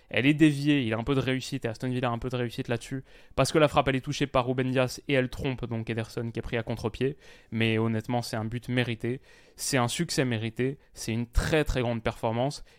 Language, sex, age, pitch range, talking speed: French, male, 20-39, 120-140 Hz, 255 wpm